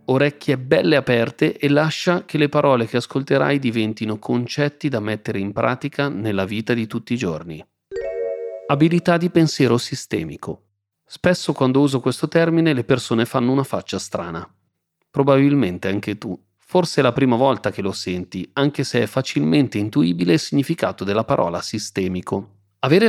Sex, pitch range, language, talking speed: male, 100-145 Hz, Italian, 155 wpm